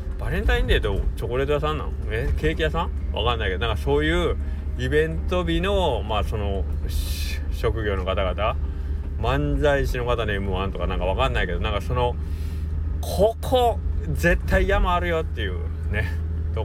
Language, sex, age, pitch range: Japanese, male, 20-39, 75-85 Hz